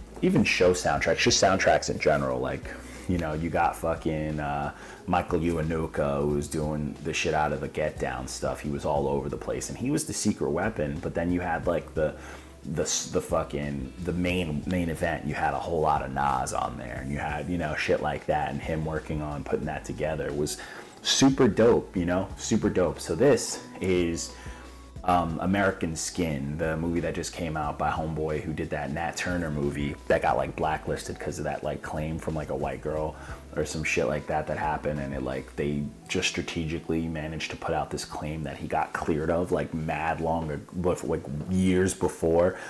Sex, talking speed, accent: male, 210 wpm, American